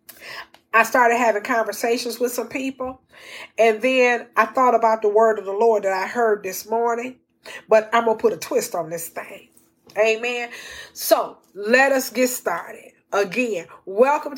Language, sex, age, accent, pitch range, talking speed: English, female, 40-59, American, 235-290 Hz, 165 wpm